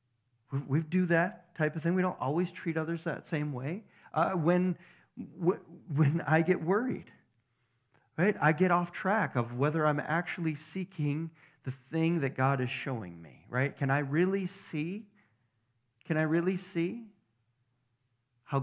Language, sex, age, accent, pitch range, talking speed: English, male, 40-59, American, 125-170 Hz, 150 wpm